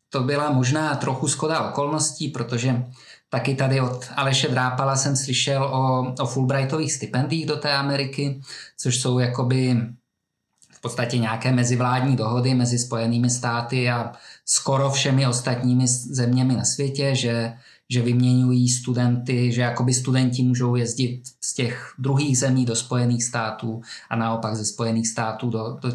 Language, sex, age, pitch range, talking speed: Czech, male, 20-39, 120-135 Hz, 145 wpm